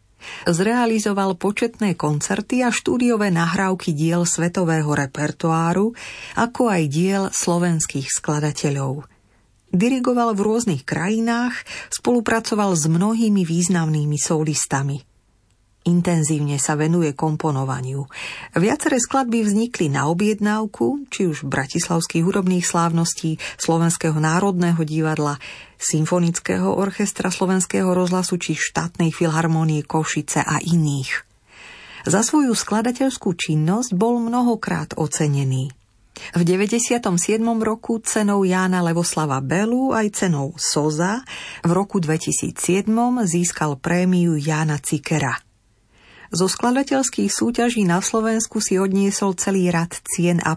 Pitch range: 155-205 Hz